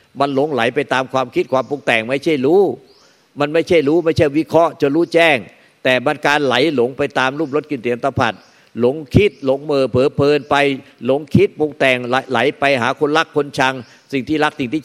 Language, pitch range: Thai, 135-165 Hz